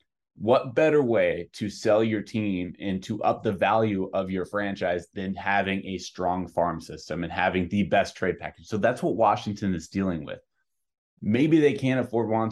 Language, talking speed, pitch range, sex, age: English, 185 wpm, 95-115 Hz, male, 20-39